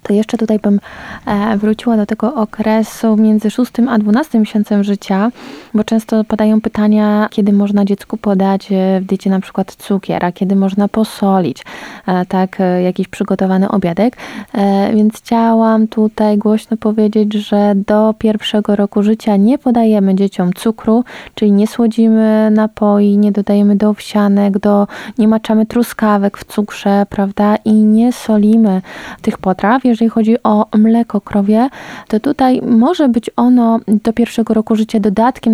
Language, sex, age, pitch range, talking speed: Polish, female, 20-39, 205-230 Hz, 140 wpm